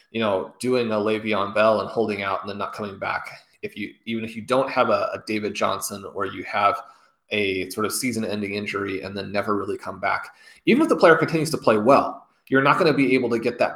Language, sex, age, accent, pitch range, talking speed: English, male, 30-49, American, 110-130 Hz, 250 wpm